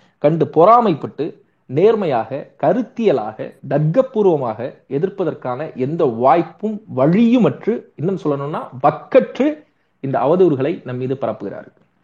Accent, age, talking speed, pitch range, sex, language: native, 30-49, 95 wpm, 130-200 Hz, male, Tamil